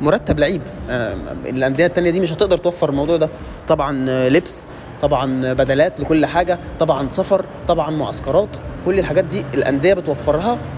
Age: 20-39